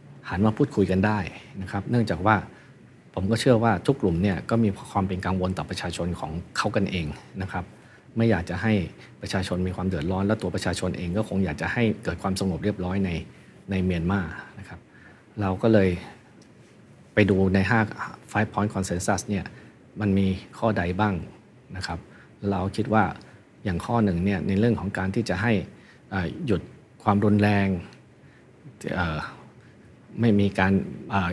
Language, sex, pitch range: Thai, male, 95-110 Hz